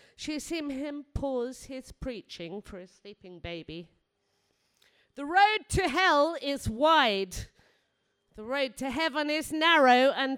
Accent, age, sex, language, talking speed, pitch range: British, 40-59, female, English, 135 wpm, 185-290 Hz